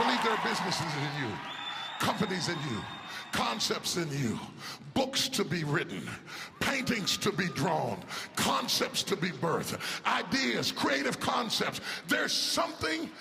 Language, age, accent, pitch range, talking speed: French, 40-59, American, 165-230 Hz, 125 wpm